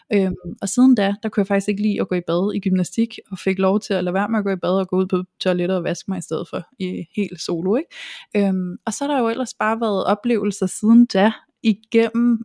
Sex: female